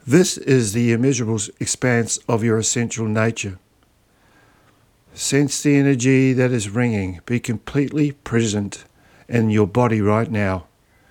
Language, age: English, 60-79